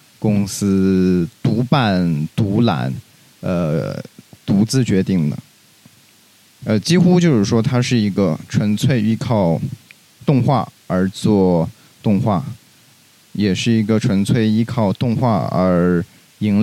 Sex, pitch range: male, 95-125 Hz